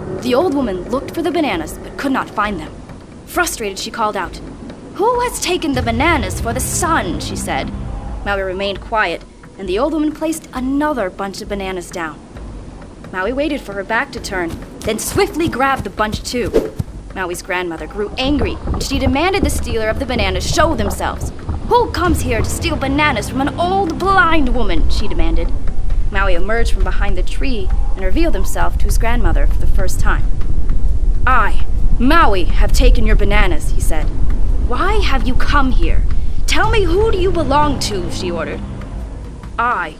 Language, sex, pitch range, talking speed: English, female, 200-315 Hz, 175 wpm